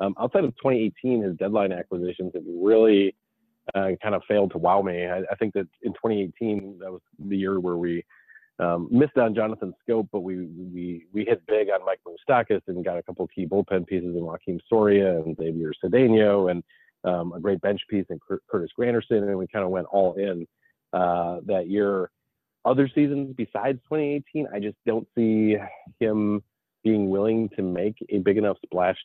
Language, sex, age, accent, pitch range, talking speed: English, male, 30-49, American, 90-110 Hz, 190 wpm